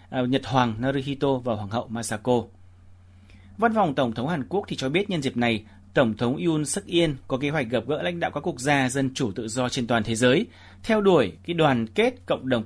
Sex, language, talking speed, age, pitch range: male, Vietnamese, 230 wpm, 30-49, 110-150 Hz